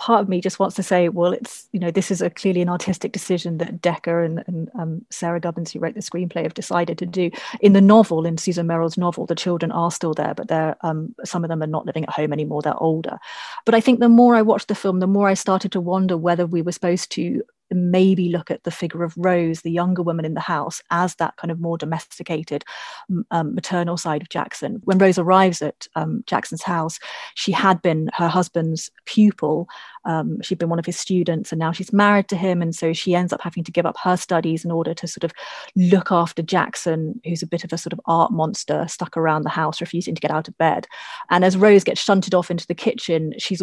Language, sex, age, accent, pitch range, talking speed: English, female, 30-49, British, 165-190 Hz, 245 wpm